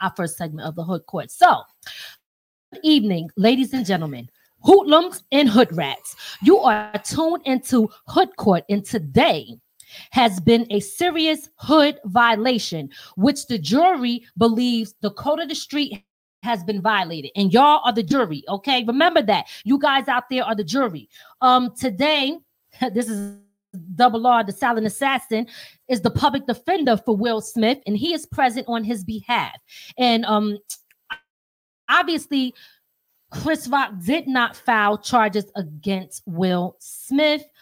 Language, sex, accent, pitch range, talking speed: English, female, American, 210-280 Hz, 150 wpm